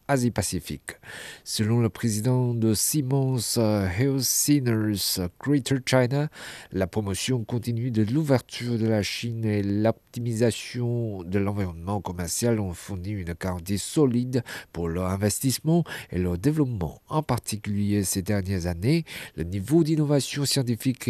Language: French